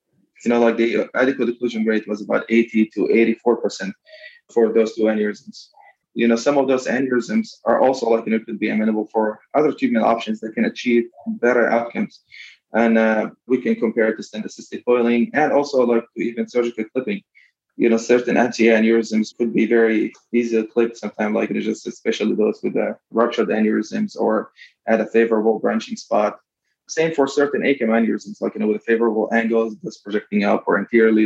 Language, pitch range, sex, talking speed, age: English, 110-125 Hz, male, 200 wpm, 20-39